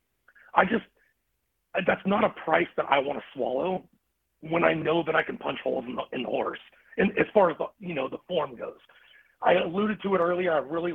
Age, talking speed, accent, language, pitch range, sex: 30-49, 215 wpm, American, English, 150-180 Hz, male